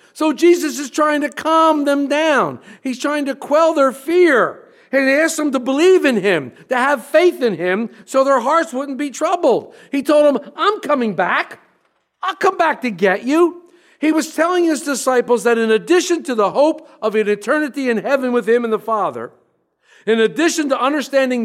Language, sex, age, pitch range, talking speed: English, male, 50-69, 230-310 Hz, 195 wpm